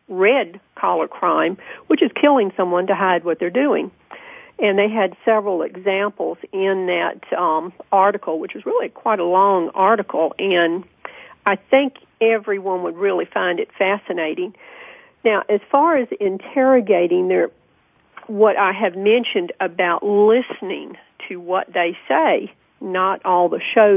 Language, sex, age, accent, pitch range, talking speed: English, female, 50-69, American, 185-260 Hz, 140 wpm